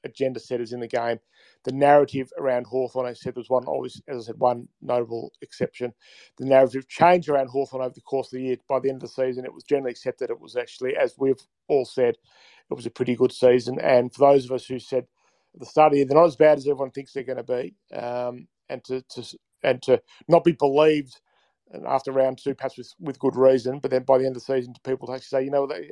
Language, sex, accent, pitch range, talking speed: English, male, Australian, 125-145 Hz, 255 wpm